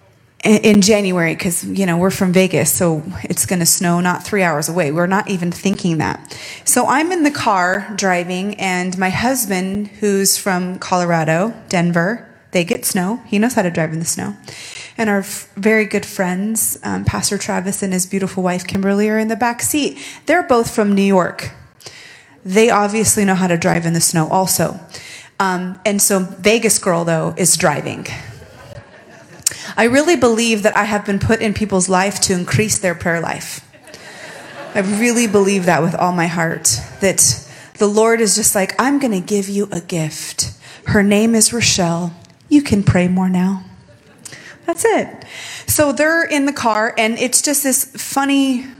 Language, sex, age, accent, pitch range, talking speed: English, female, 30-49, American, 180-225 Hz, 175 wpm